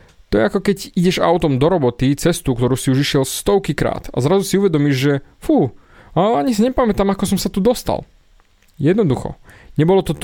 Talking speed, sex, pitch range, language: 190 wpm, male, 125-185 Hz, Slovak